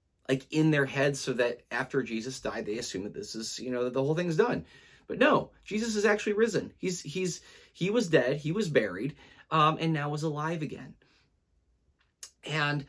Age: 30-49